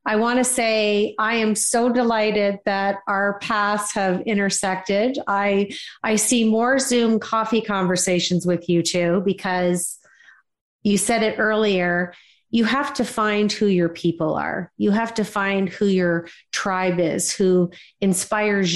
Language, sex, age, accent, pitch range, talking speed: English, female, 40-59, American, 175-205 Hz, 145 wpm